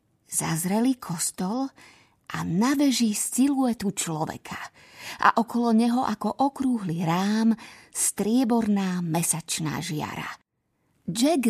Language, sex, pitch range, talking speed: Slovak, female, 175-225 Hz, 90 wpm